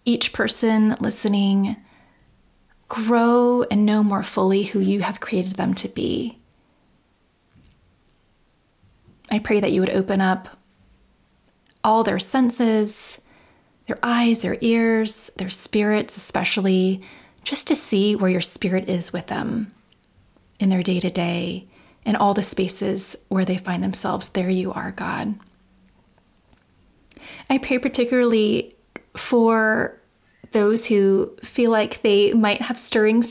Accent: American